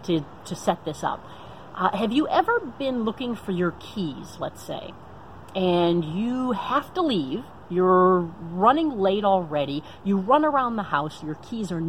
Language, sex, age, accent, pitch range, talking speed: English, female, 40-59, American, 180-280 Hz, 165 wpm